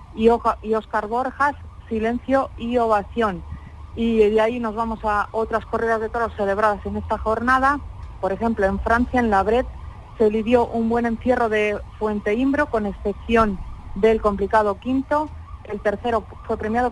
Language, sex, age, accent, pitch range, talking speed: Spanish, female, 40-59, Spanish, 210-235 Hz, 155 wpm